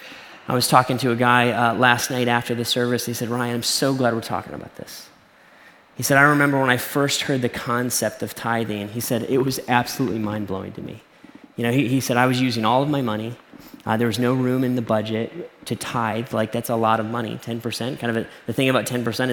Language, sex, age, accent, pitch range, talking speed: English, male, 10-29, American, 120-140 Hz, 245 wpm